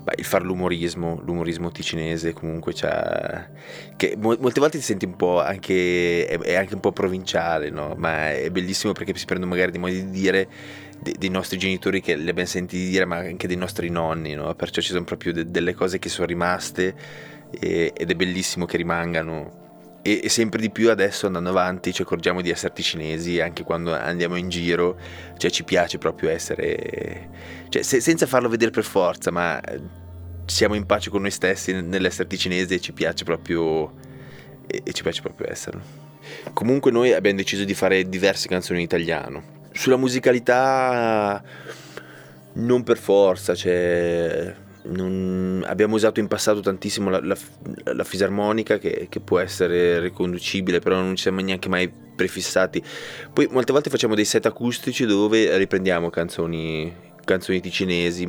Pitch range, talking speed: 85-100 Hz, 160 wpm